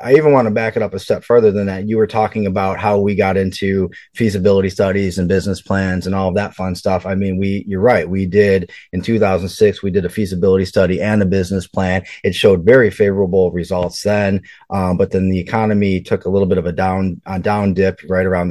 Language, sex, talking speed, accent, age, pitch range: English, male, 235 wpm, American, 30-49, 90-105 Hz